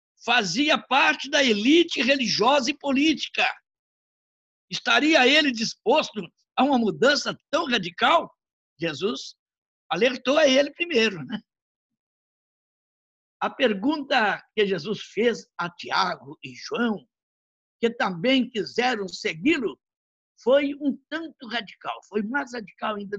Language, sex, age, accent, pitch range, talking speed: Portuguese, male, 60-79, Brazilian, 200-270 Hz, 110 wpm